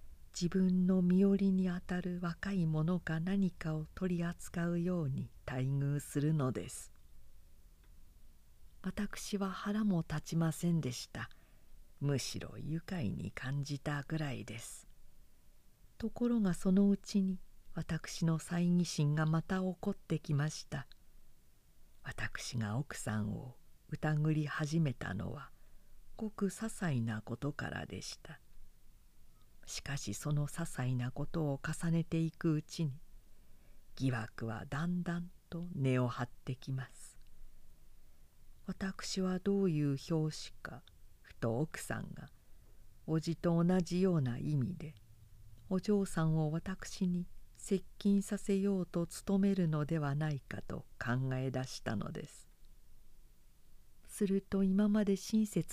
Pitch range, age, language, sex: 130-185 Hz, 50-69, Japanese, female